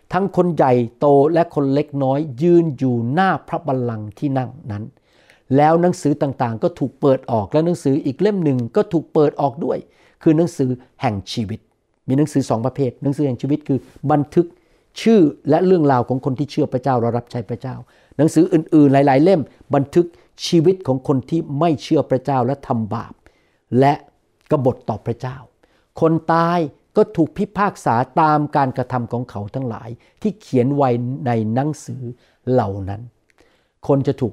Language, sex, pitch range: Thai, male, 125-165 Hz